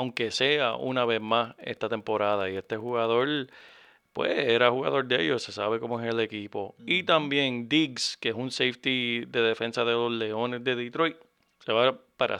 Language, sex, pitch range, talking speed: Spanish, male, 115-145 Hz, 185 wpm